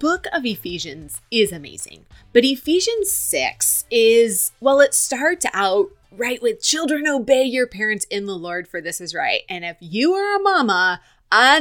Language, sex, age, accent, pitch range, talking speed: English, female, 30-49, American, 170-250 Hz, 170 wpm